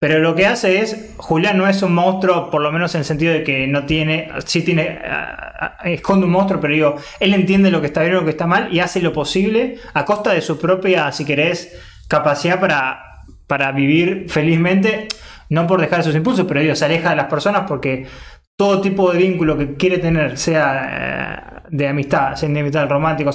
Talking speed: 210 wpm